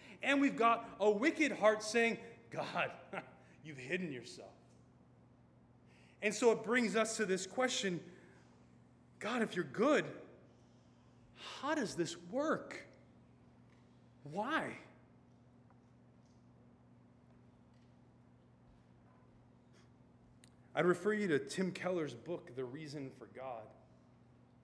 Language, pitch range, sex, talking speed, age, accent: English, 125-195 Hz, male, 95 wpm, 30-49, American